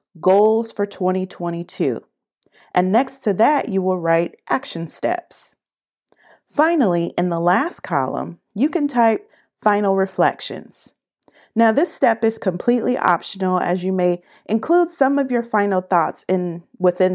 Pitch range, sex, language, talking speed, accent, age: 175-245 Hz, female, English, 135 wpm, American, 40-59